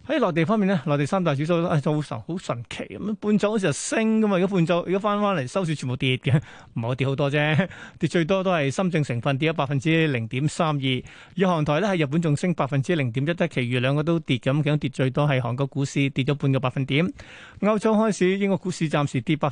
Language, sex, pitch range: Chinese, male, 140-180 Hz